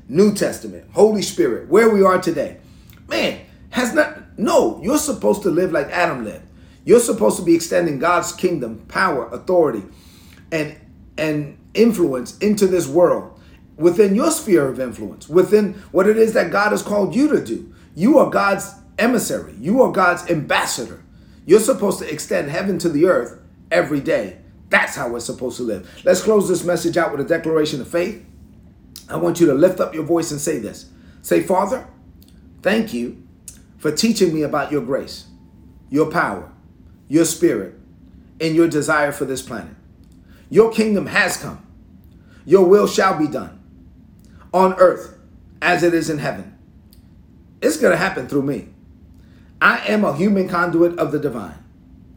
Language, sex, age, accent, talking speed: English, male, 40-59, American, 165 wpm